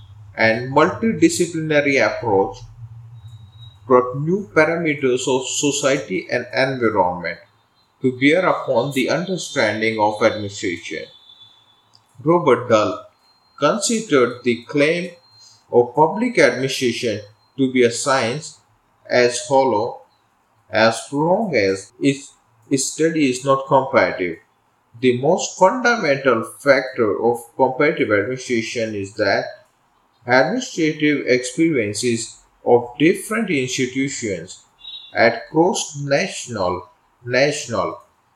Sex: male